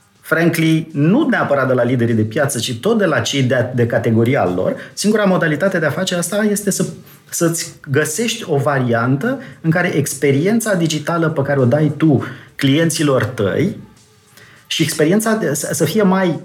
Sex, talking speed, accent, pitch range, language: male, 175 wpm, native, 140-185 Hz, Romanian